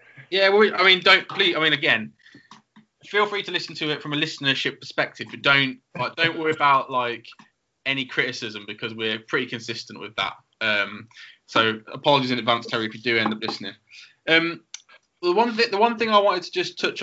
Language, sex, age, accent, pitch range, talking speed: English, male, 20-39, British, 115-150 Hz, 210 wpm